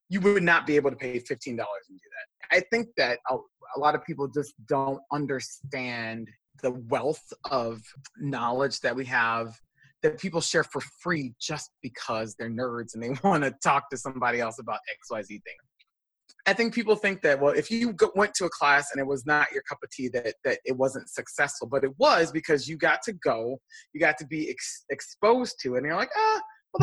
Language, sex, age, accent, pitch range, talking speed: English, male, 30-49, American, 130-175 Hz, 215 wpm